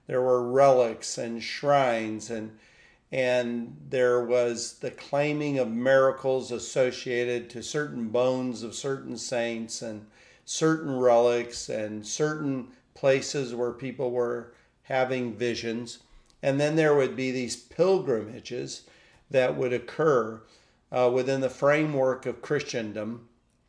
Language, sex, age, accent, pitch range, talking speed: English, male, 50-69, American, 120-140 Hz, 120 wpm